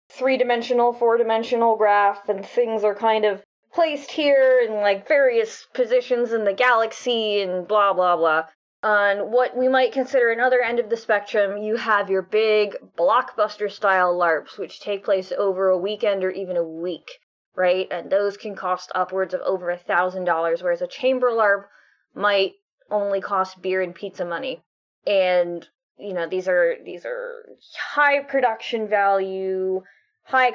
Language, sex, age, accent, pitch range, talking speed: English, female, 20-39, American, 185-230 Hz, 150 wpm